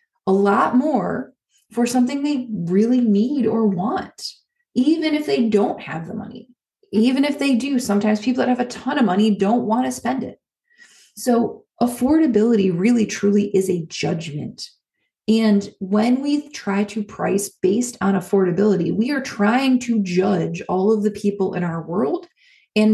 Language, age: English, 20-39